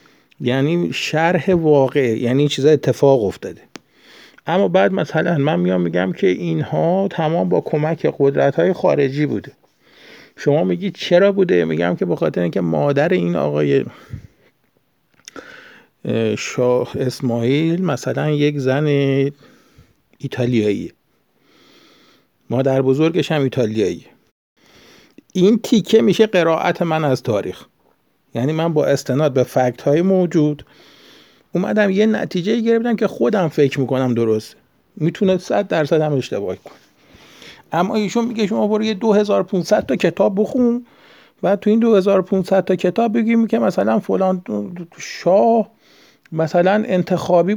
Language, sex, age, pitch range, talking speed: Persian, male, 50-69, 135-200 Hz, 120 wpm